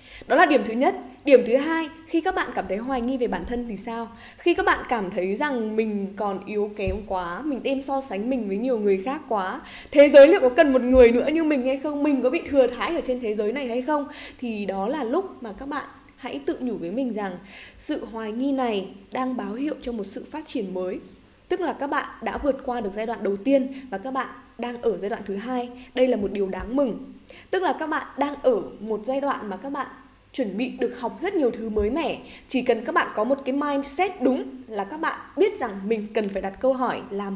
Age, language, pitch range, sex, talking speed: 10-29, Vietnamese, 215-275 Hz, female, 255 wpm